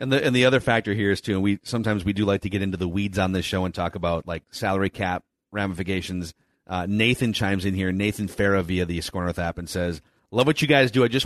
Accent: American